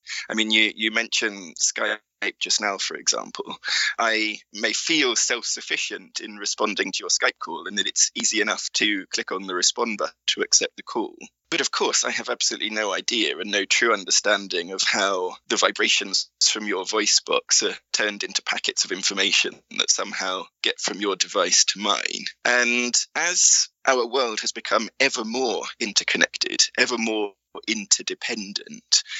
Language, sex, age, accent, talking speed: English, male, 20-39, British, 170 wpm